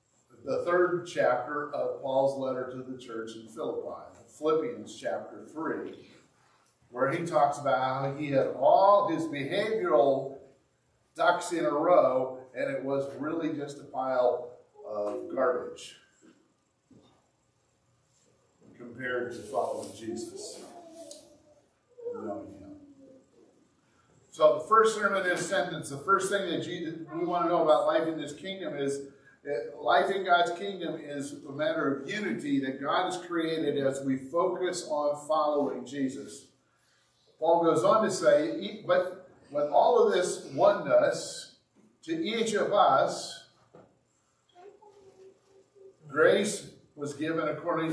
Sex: male